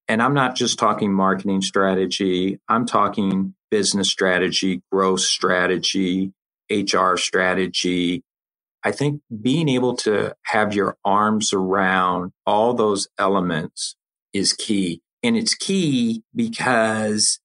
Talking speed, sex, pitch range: 115 wpm, male, 95-125 Hz